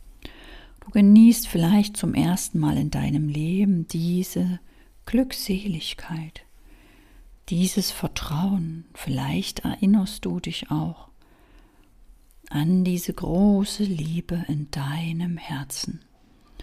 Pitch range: 155-200 Hz